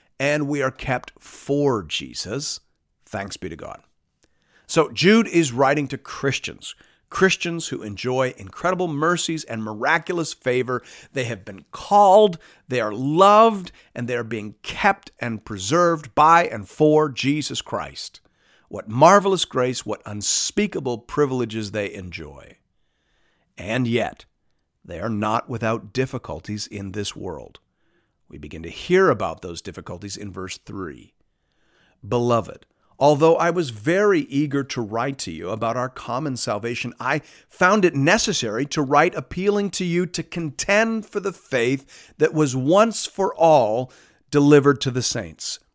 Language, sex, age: English, male, 50-69